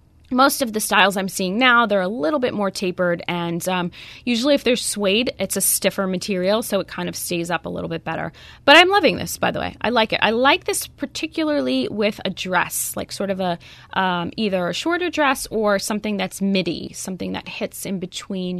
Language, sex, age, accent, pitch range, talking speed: English, female, 20-39, American, 190-255 Hz, 220 wpm